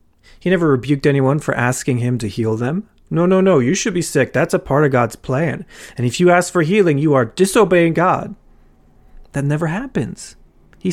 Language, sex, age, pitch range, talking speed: English, male, 30-49, 125-175 Hz, 205 wpm